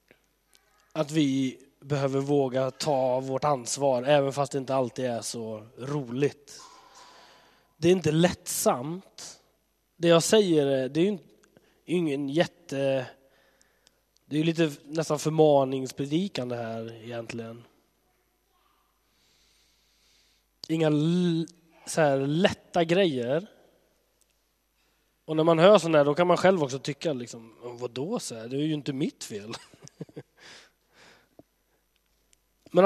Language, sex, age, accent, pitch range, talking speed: Swedish, male, 20-39, native, 135-180 Hz, 120 wpm